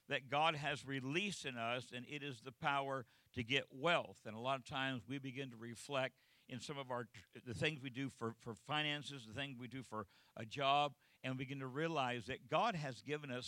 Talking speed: 225 wpm